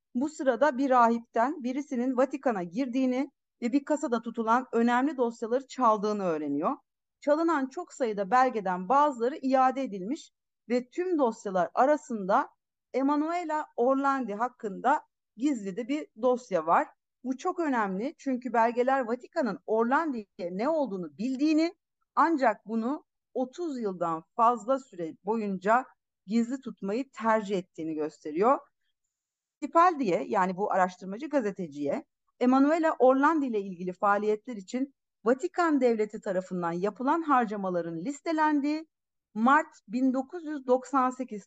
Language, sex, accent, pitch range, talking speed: Turkish, female, native, 215-280 Hz, 110 wpm